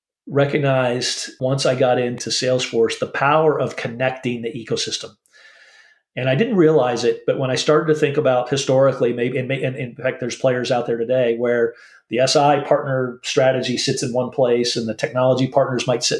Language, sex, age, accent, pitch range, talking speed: English, male, 40-59, American, 120-140 Hz, 180 wpm